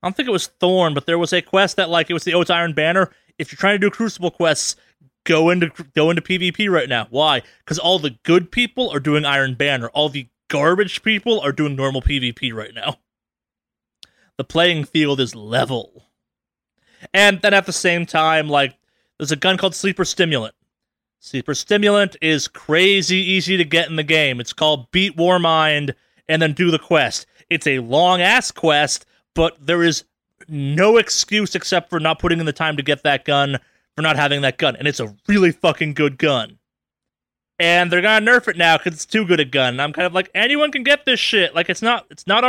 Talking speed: 215 wpm